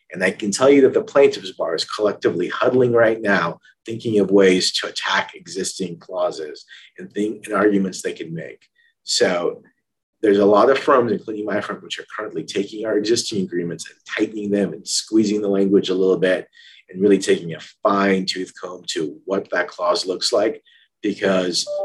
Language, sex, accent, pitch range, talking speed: English, male, American, 95-150 Hz, 185 wpm